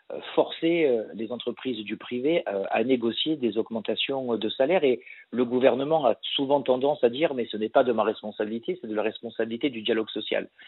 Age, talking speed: 50-69, 185 wpm